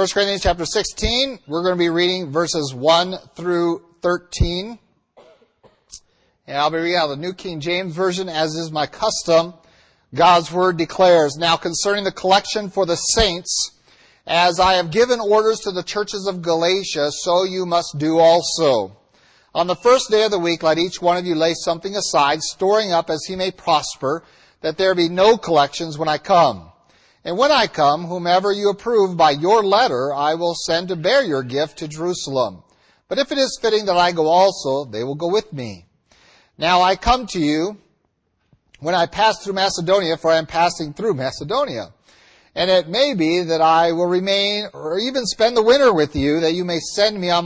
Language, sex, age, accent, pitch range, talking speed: English, male, 40-59, American, 165-200 Hz, 190 wpm